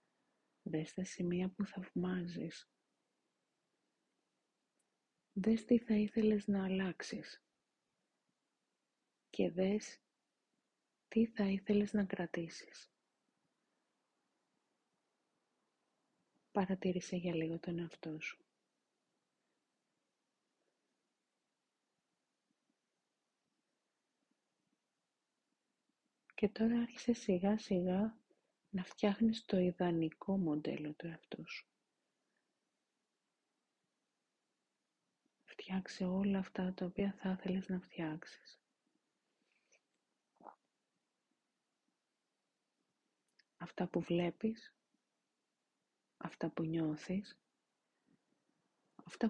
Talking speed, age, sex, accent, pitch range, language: 65 wpm, 30-49, female, native, 175-210 Hz, Greek